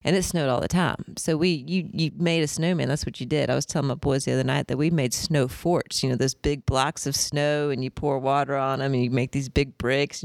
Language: English